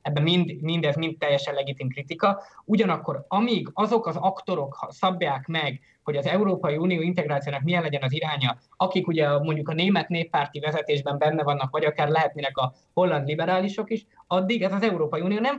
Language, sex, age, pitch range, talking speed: Hungarian, male, 20-39, 140-180 Hz, 175 wpm